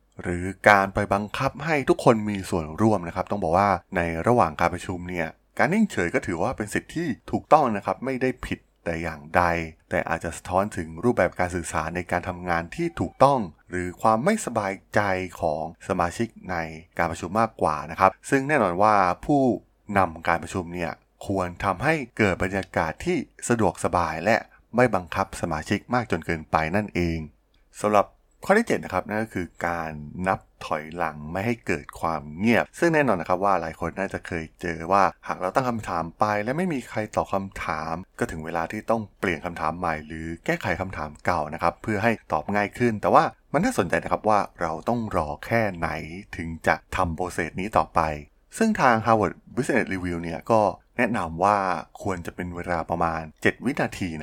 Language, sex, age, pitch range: Thai, male, 20-39, 85-105 Hz